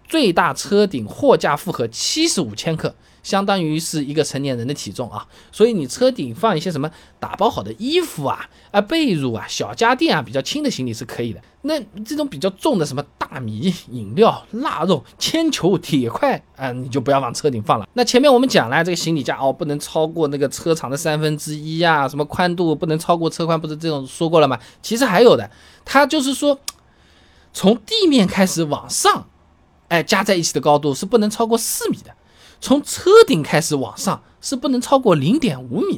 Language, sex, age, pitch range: Chinese, male, 20-39, 145-205 Hz